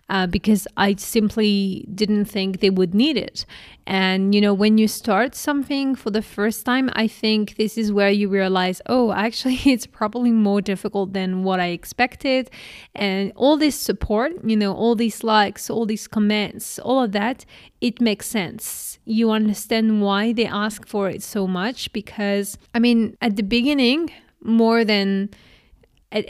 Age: 20-39